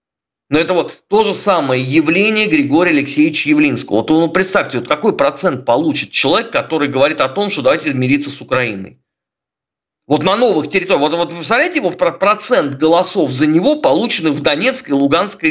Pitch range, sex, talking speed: 130-210 Hz, male, 165 wpm